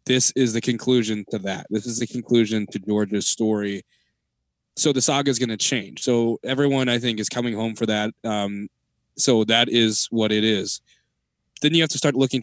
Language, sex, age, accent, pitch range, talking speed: English, male, 20-39, American, 110-125 Hz, 205 wpm